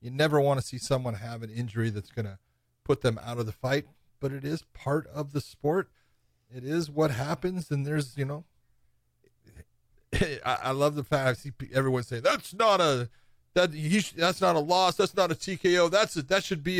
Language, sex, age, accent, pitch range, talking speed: English, male, 40-59, American, 125-170 Hz, 210 wpm